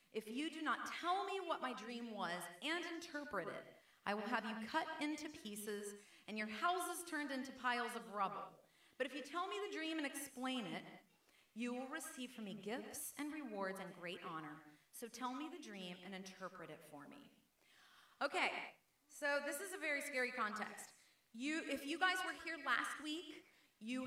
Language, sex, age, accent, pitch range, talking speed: English, female, 30-49, American, 225-290 Hz, 190 wpm